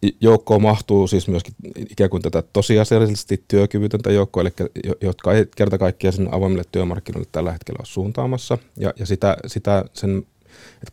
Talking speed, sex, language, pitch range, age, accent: 155 wpm, male, Finnish, 95-105 Hz, 30-49, native